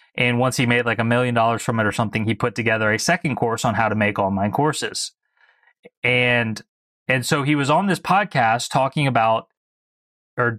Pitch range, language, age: 110-135 Hz, English, 20-39